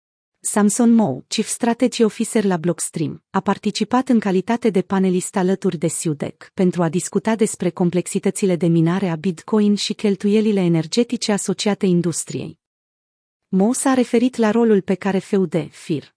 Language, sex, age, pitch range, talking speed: Romanian, female, 30-49, 180-225 Hz, 145 wpm